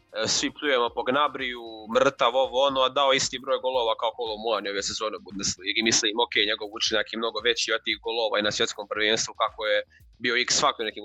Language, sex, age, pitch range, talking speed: Croatian, male, 20-39, 110-140 Hz, 210 wpm